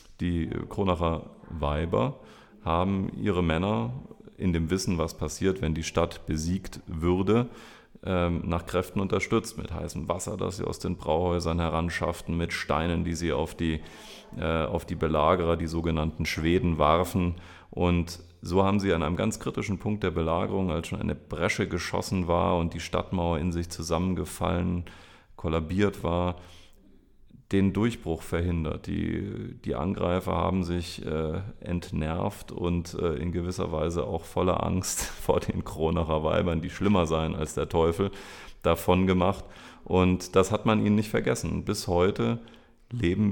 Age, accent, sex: 40-59, German, male